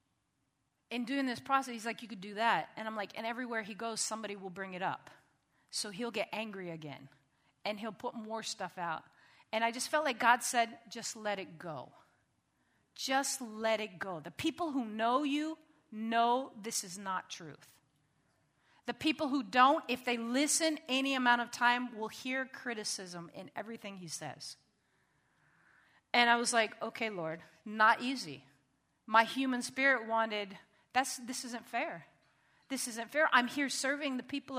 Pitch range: 220-310 Hz